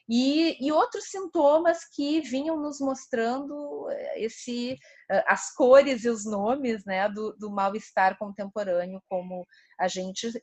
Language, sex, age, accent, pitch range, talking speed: Portuguese, female, 30-49, Brazilian, 200-270 Hz, 120 wpm